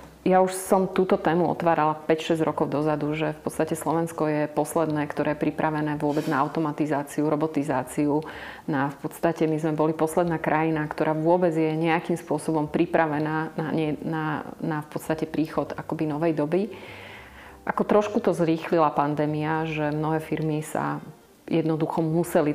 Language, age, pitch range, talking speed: Slovak, 30-49, 155-165 Hz, 150 wpm